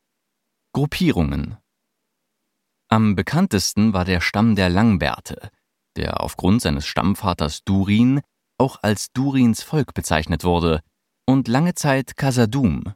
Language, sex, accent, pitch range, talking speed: German, male, German, 85-120 Hz, 105 wpm